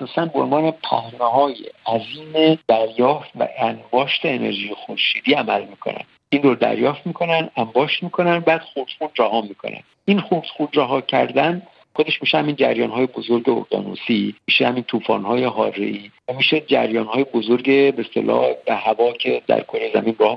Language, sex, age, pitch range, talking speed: Persian, male, 50-69, 120-150 Hz, 145 wpm